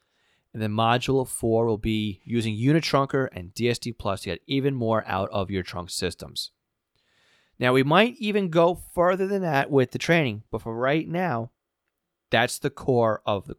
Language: English